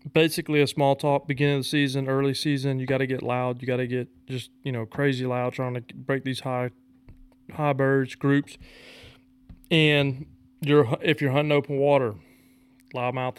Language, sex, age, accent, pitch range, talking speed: English, male, 30-49, American, 130-145 Hz, 180 wpm